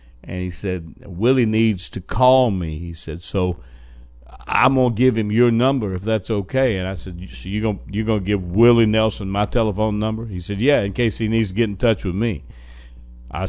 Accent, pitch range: American, 90-115 Hz